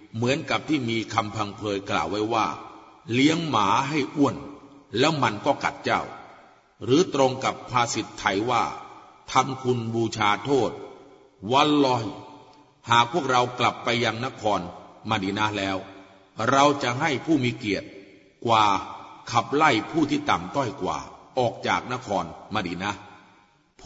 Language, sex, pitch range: Thai, male, 105-140 Hz